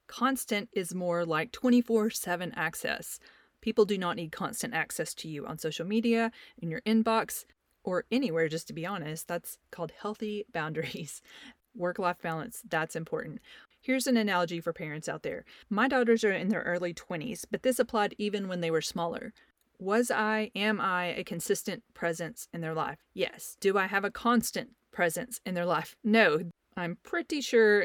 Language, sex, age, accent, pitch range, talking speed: English, female, 30-49, American, 170-220 Hz, 175 wpm